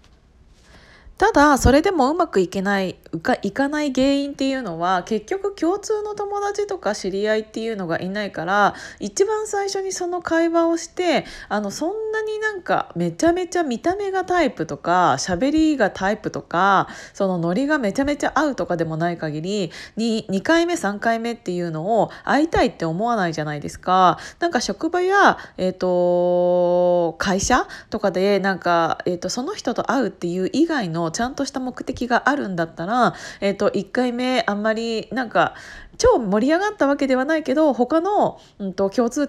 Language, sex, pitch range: Japanese, female, 190-300 Hz